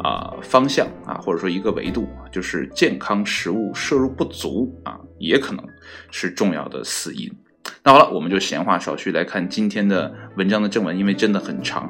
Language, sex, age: Chinese, male, 20-39